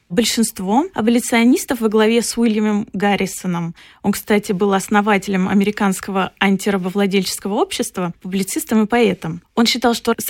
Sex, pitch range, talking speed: female, 195-230 Hz, 120 wpm